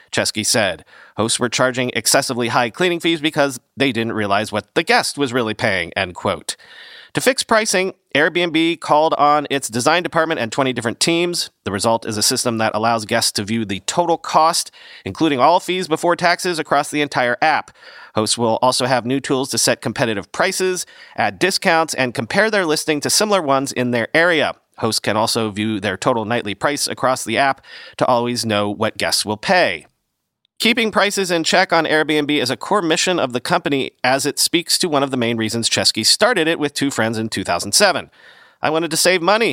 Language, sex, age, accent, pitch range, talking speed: English, male, 30-49, American, 115-165 Hz, 200 wpm